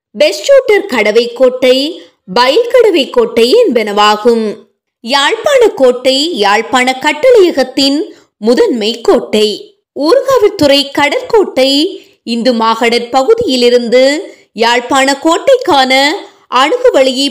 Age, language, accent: 20-39, Tamil, native